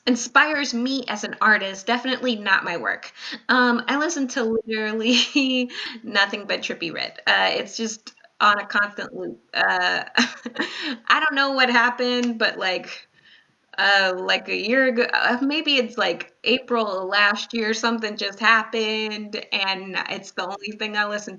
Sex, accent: female, American